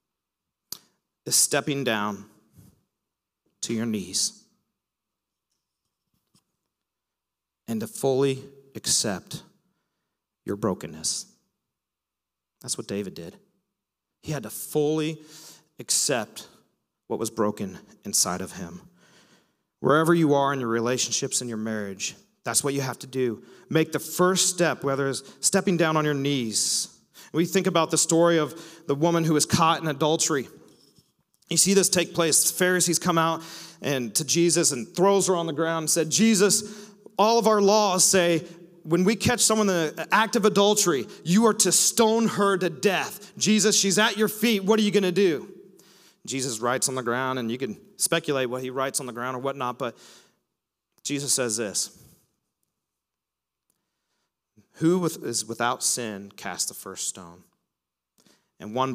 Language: English